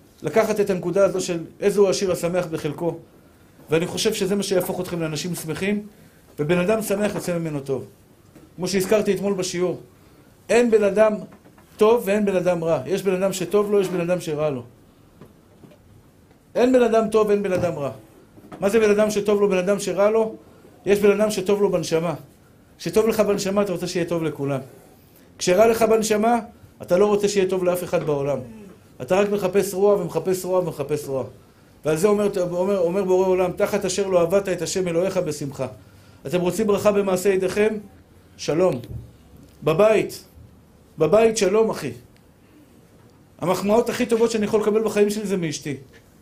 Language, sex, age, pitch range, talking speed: Hebrew, male, 50-69, 155-205 Hz, 170 wpm